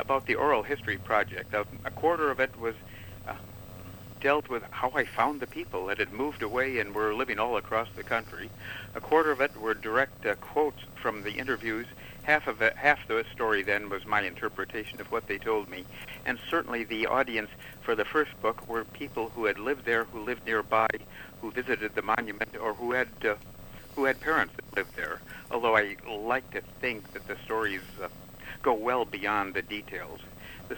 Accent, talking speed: American, 195 wpm